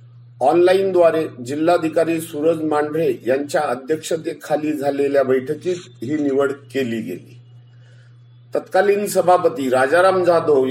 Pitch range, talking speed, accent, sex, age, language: 130-175 Hz, 80 wpm, native, male, 50-69, Marathi